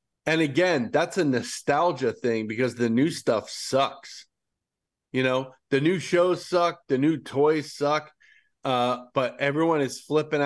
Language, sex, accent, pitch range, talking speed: English, male, American, 115-145 Hz, 150 wpm